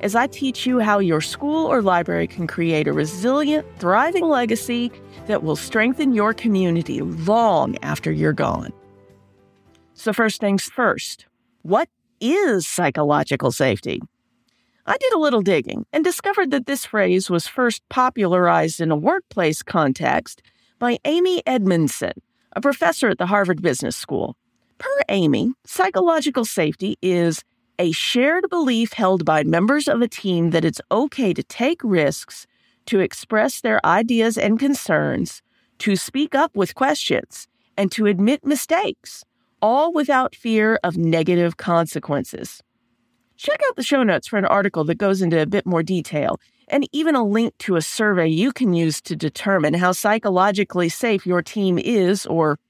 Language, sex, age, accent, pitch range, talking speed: English, female, 40-59, American, 170-260 Hz, 155 wpm